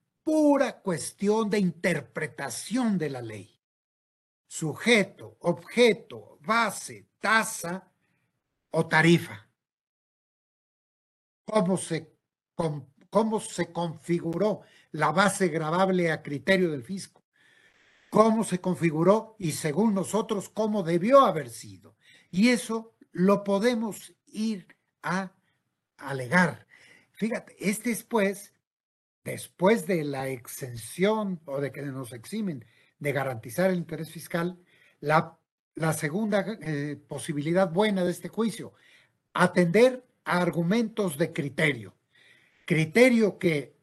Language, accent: Spanish, Mexican